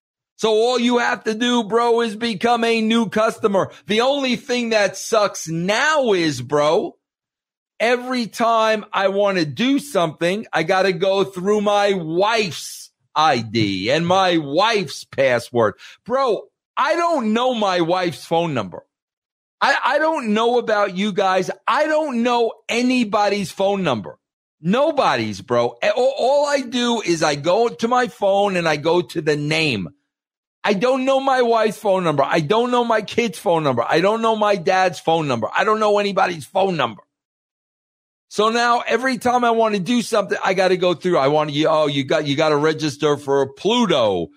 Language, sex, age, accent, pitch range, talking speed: English, male, 50-69, American, 165-235 Hz, 175 wpm